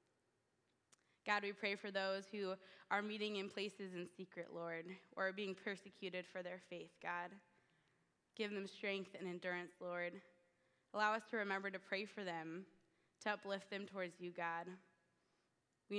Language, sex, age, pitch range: English, female, 20-39, 180-200 Hz